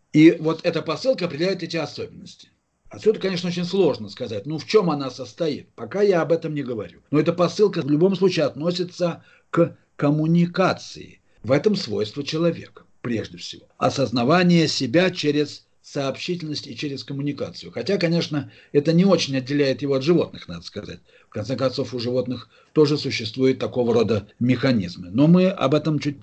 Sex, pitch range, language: male, 130-170 Hz, Russian